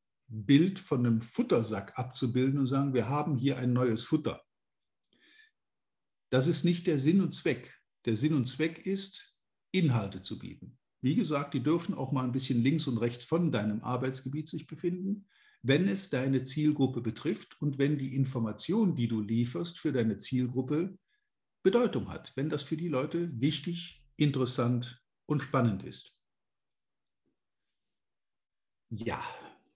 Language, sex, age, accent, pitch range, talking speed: German, male, 50-69, German, 120-170 Hz, 145 wpm